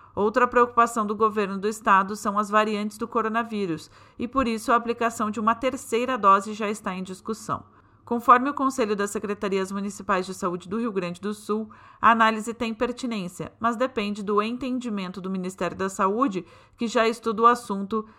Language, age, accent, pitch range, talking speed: Portuguese, 40-59, Brazilian, 195-235 Hz, 180 wpm